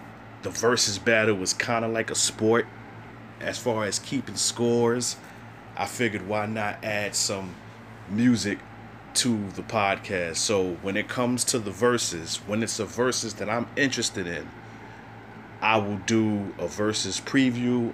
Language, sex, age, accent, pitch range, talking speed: English, male, 30-49, American, 105-115 Hz, 150 wpm